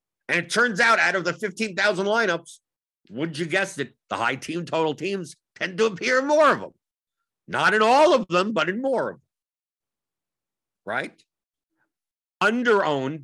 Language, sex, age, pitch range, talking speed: English, male, 50-69, 120-195 Hz, 170 wpm